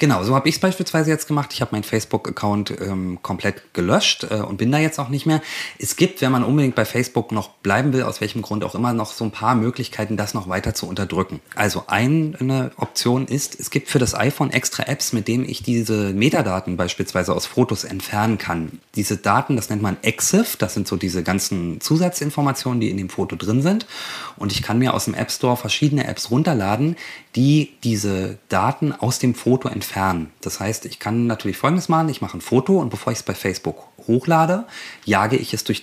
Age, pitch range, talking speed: 30-49, 95-135 Hz, 210 wpm